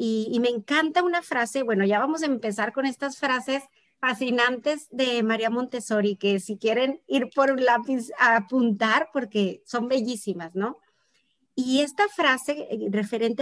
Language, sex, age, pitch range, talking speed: Spanish, female, 40-59, 215-275 Hz, 155 wpm